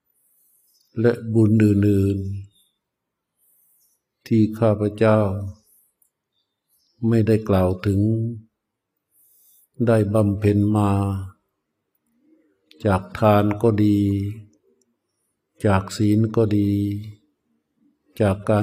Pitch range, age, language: 100-110 Hz, 60-79, Thai